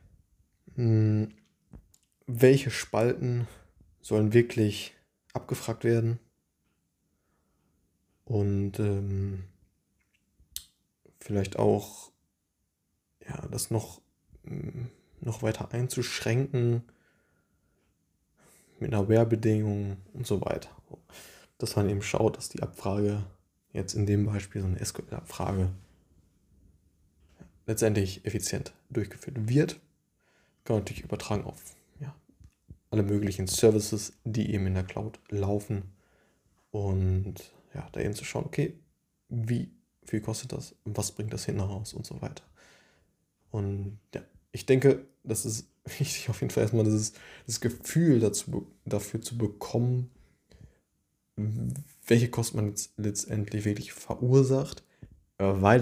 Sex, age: male, 20-39